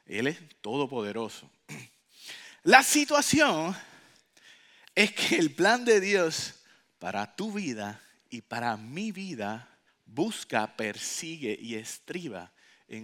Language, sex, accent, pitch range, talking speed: English, male, Venezuelan, 125-205 Hz, 105 wpm